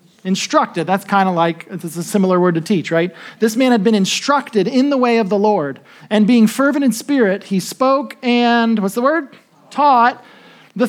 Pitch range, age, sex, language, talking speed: 200-245 Hz, 40-59, male, English, 200 wpm